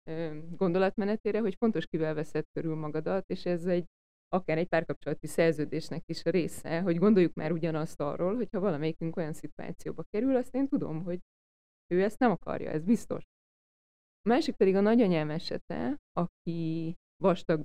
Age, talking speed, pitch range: 20-39, 155 wpm, 165-235 Hz